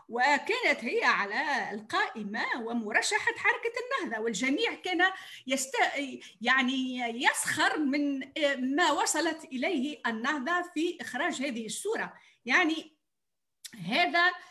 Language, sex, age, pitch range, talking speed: Arabic, female, 40-59, 235-325 Hz, 95 wpm